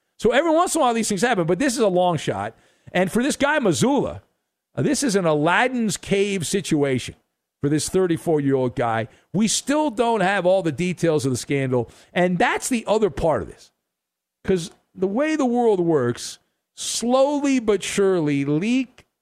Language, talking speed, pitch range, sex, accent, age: English, 180 wpm, 145-220 Hz, male, American, 50-69